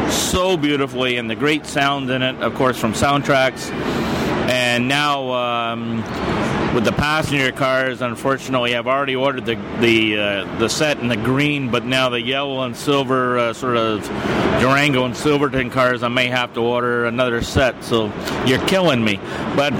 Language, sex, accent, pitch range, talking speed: English, male, American, 115-130 Hz, 165 wpm